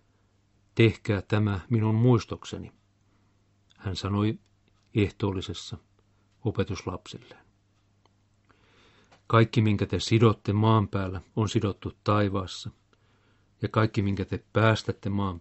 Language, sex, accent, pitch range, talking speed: Finnish, male, native, 100-110 Hz, 90 wpm